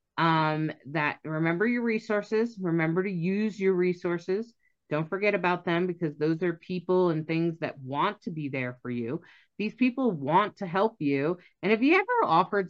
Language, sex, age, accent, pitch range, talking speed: English, female, 30-49, American, 150-200 Hz, 180 wpm